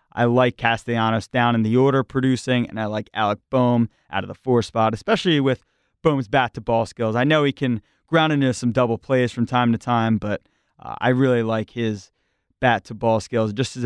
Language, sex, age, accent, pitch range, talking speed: English, male, 30-49, American, 115-140 Hz, 200 wpm